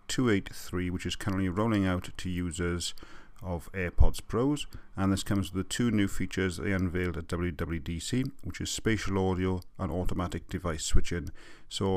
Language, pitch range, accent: English, 90-100 Hz, British